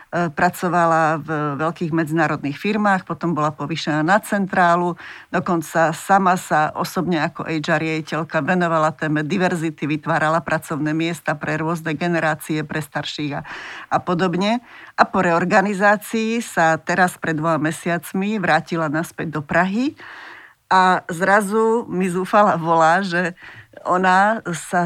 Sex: female